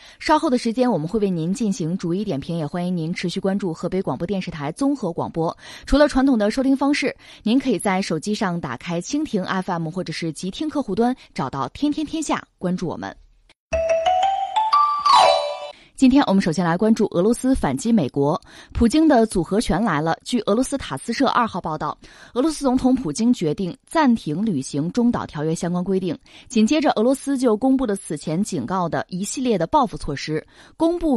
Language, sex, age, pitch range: Chinese, female, 20-39, 175-265 Hz